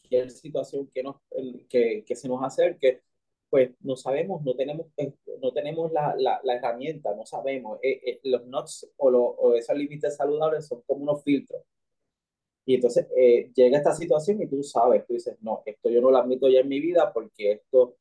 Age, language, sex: 20-39, Spanish, male